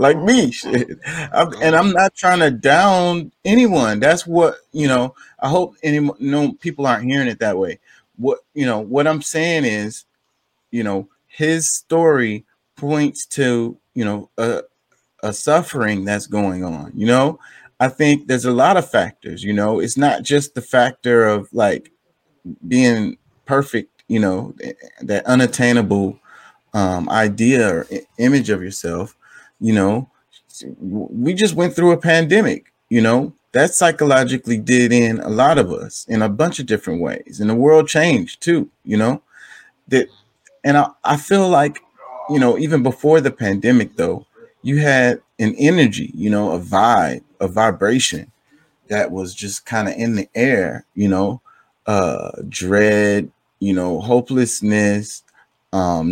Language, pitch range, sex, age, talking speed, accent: English, 105-155 Hz, male, 30-49, 155 wpm, American